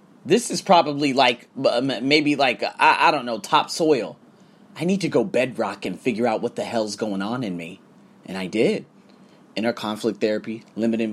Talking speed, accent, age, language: 180 wpm, American, 30-49, English